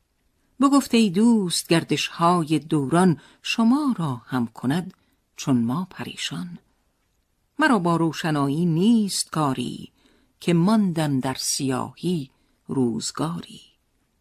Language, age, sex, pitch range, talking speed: Persian, 50-69, female, 130-180 Hz, 95 wpm